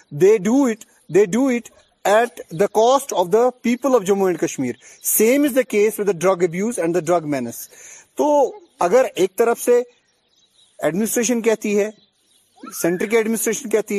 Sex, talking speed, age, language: male, 170 wpm, 30-49, Urdu